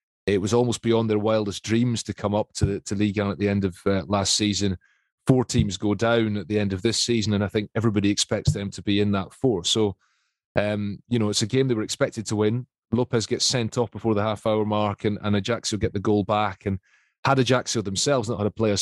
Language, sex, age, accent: English, male, 30-49, British